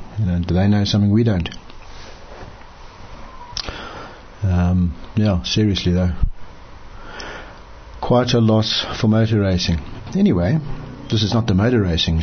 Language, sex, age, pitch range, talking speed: English, male, 60-79, 95-115 Hz, 115 wpm